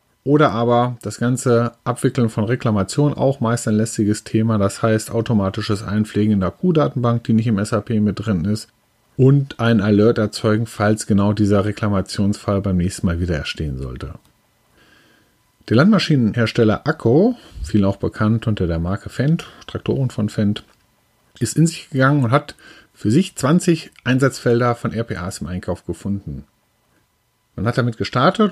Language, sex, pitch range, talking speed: German, male, 105-135 Hz, 155 wpm